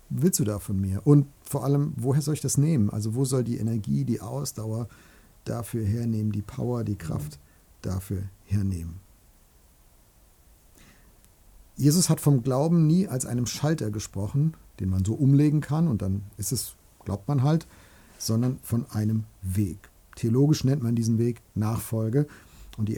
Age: 50-69